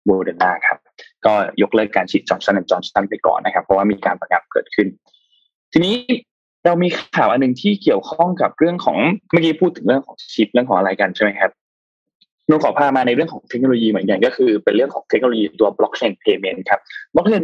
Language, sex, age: Thai, male, 20-39